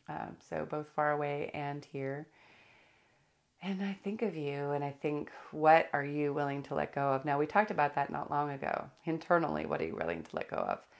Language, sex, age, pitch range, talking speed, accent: English, female, 30-49, 135-155 Hz, 220 wpm, American